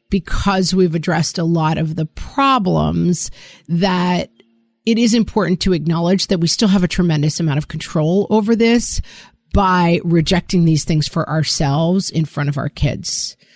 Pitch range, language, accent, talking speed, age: 170-230 Hz, English, American, 160 wpm, 40-59